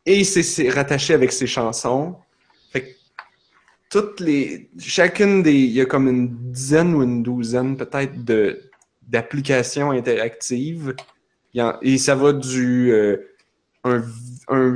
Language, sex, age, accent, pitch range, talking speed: French, male, 20-39, Canadian, 120-145 Hz, 145 wpm